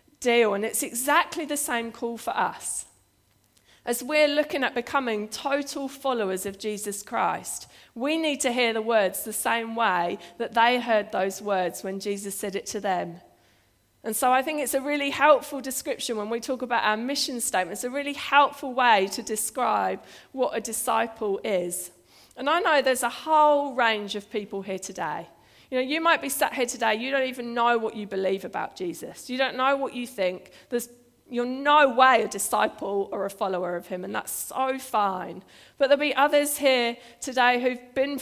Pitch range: 205-270 Hz